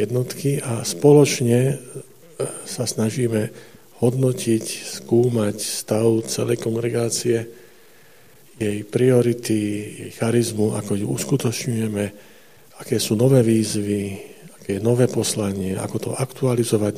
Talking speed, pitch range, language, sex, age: 95 wpm, 110-125 Hz, Slovak, male, 50-69